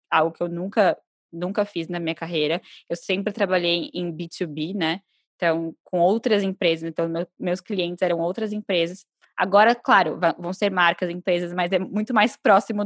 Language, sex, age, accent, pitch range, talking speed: Portuguese, female, 10-29, Brazilian, 175-200 Hz, 170 wpm